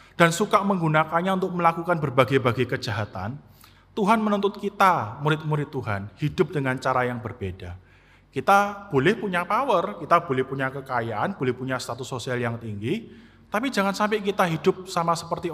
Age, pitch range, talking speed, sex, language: 30-49, 120-175 Hz, 145 wpm, male, Indonesian